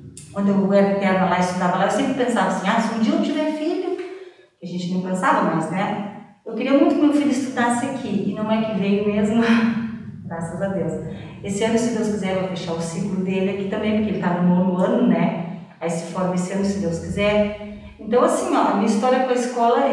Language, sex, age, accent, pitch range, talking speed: Portuguese, female, 40-59, Brazilian, 190-230 Hz, 235 wpm